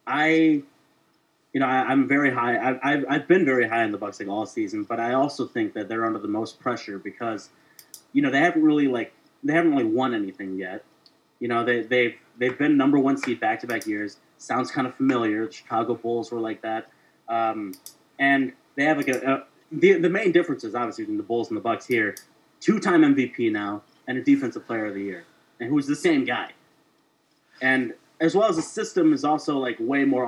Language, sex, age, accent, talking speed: English, male, 30-49, American, 220 wpm